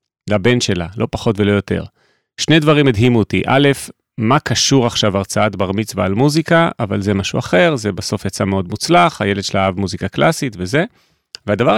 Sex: male